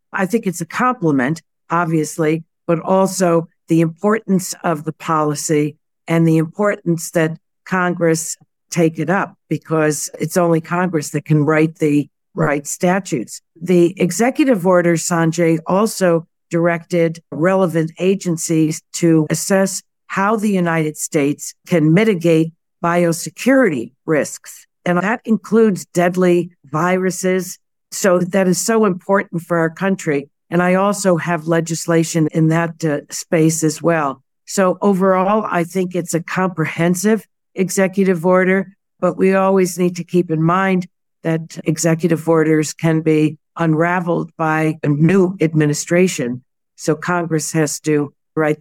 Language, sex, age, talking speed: English, female, 60-79, 130 wpm